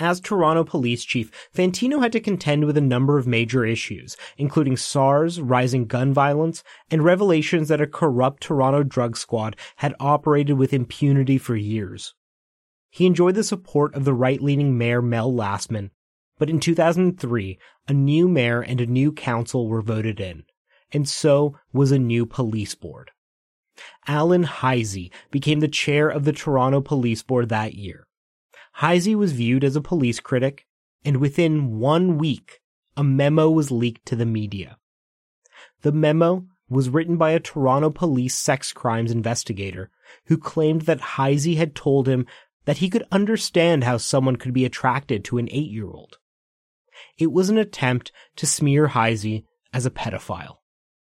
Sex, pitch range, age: male, 120-155 Hz, 30-49